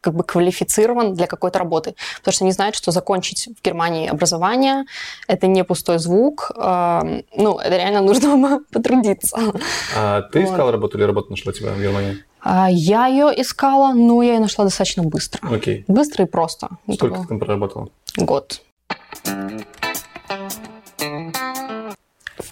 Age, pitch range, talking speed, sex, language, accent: 20-39, 180-220 Hz, 140 wpm, female, Russian, native